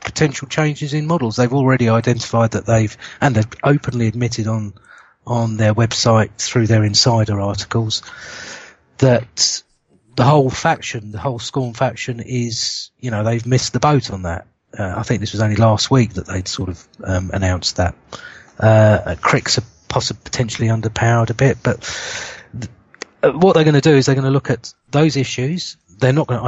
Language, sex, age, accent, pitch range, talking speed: English, male, 30-49, British, 110-130 Hz, 180 wpm